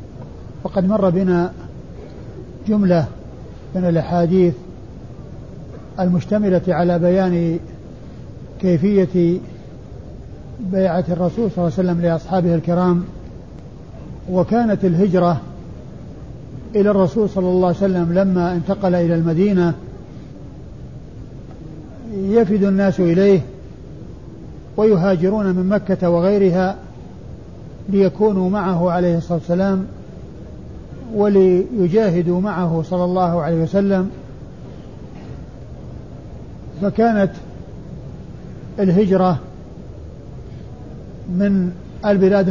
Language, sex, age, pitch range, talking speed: Arabic, male, 50-69, 175-195 Hz, 75 wpm